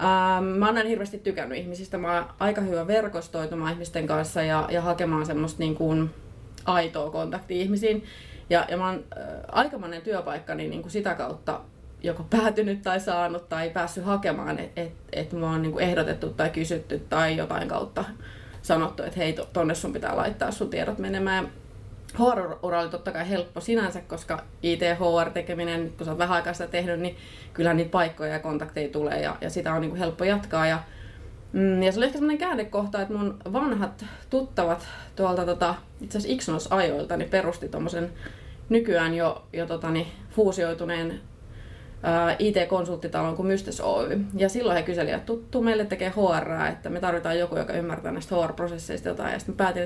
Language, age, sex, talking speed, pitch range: Finnish, 20-39, female, 165 wpm, 165-195 Hz